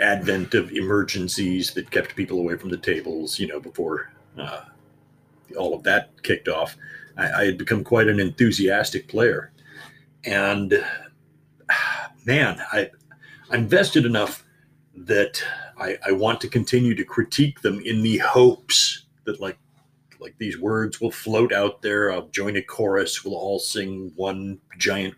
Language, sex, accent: English, male, American